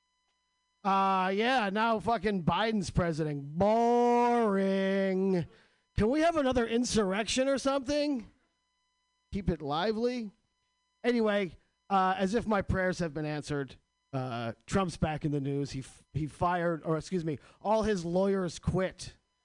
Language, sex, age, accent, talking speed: English, male, 40-59, American, 135 wpm